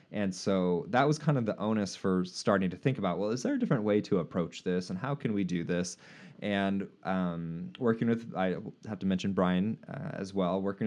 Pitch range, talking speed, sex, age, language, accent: 90-115 Hz, 225 wpm, male, 20-39, English, American